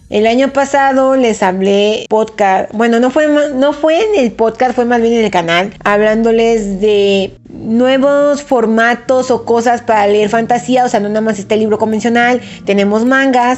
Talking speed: 170 wpm